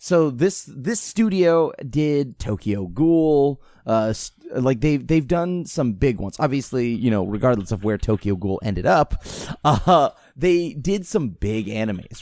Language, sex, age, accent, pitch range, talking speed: English, male, 20-39, American, 115-165 Hz, 155 wpm